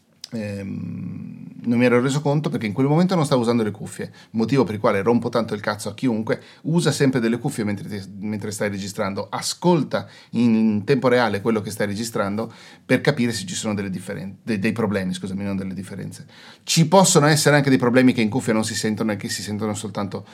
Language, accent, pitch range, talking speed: Italian, native, 105-125 Hz, 205 wpm